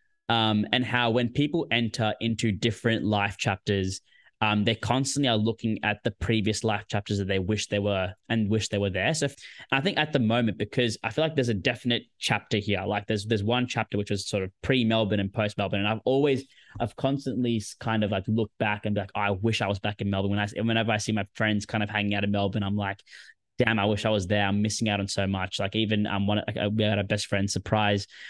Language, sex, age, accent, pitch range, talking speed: English, male, 10-29, Australian, 100-120 Hz, 255 wpm